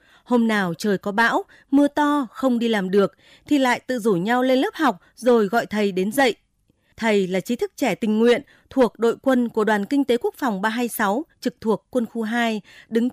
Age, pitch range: 20-39, 150-250 Hz